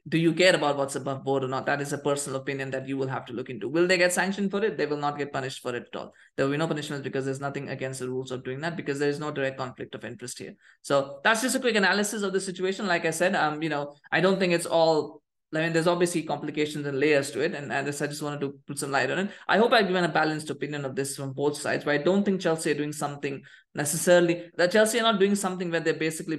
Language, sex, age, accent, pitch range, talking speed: English, male, 20-39, Indian, 140-175 Hz, 295 wpm